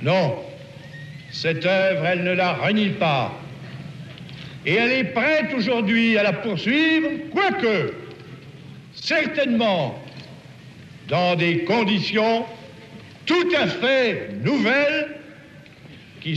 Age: 60-79